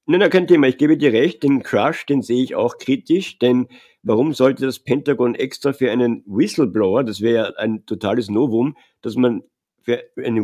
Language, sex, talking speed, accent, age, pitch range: German, male, 195 wpm, German, 50-69, 105-130 Hz